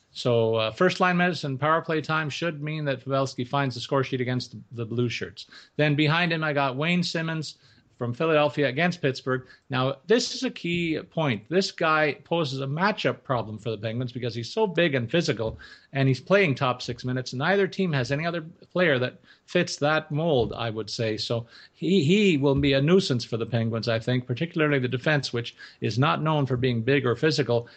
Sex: male